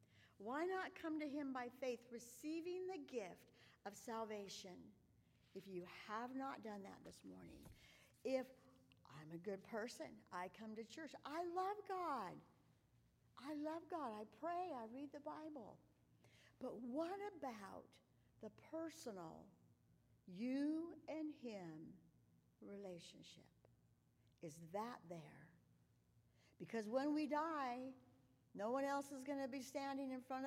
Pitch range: 205-305 Hz